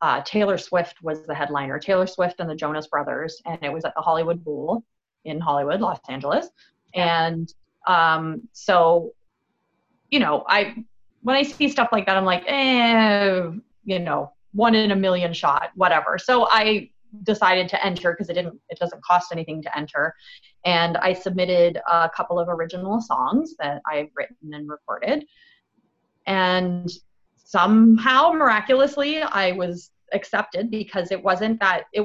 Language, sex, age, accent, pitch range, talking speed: English, female, 30-49, American, 160-220 Hz, 155 wpm